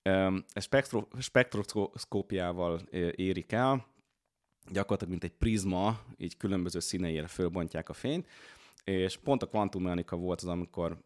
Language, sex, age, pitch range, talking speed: Hungarian, male, 30-49, 85-105 Hz, 120 wpm